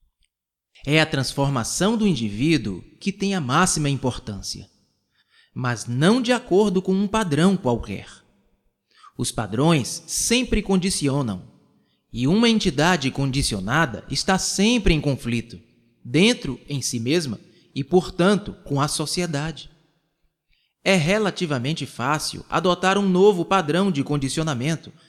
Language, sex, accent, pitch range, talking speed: Portuguese, male, Brazilian, 125-180 Hz, 115 wpm